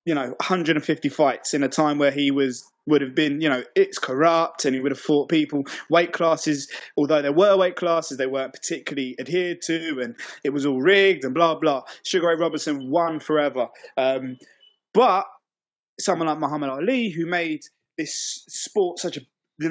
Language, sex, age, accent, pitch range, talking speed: English, male, 20-39, British, 145-190 Hz, 185 wpm